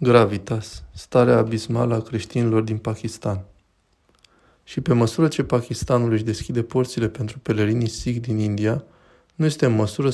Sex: male